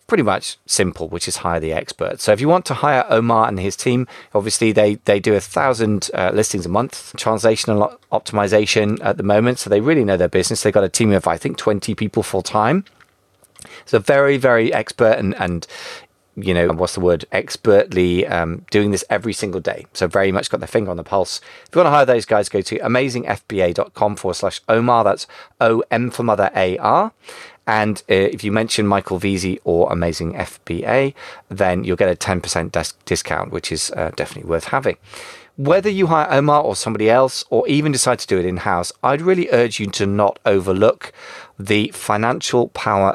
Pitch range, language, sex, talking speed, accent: 90-115 Hz, English, male, 200 wpm, British